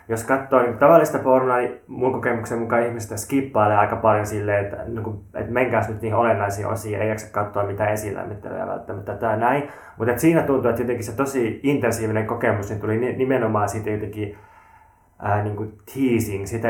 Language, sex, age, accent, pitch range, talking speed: Finnish, male, 20-39, native, 105-125 Hz, 175 wpm